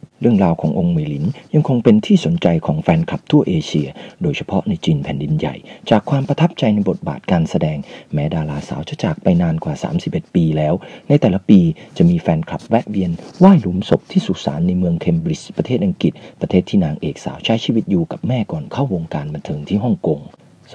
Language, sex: Thai, male